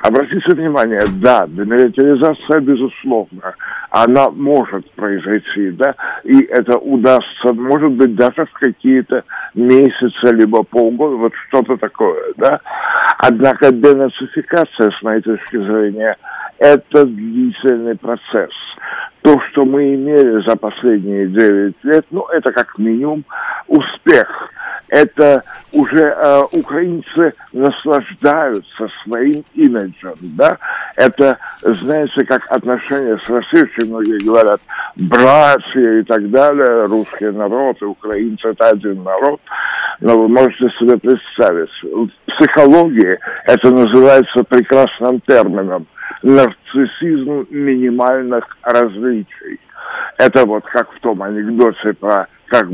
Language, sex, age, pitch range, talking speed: Russian, male, 60-79, 115-145 Hz, 105 wpm